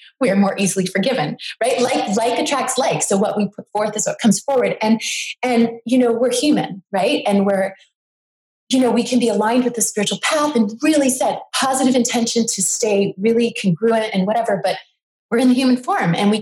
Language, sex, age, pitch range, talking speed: English, female, 30-49, 195-250 Hz, 205 wpm